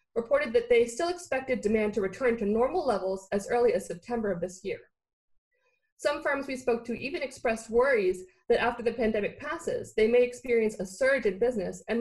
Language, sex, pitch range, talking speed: English, female, 205-265 Hz, 195 wpm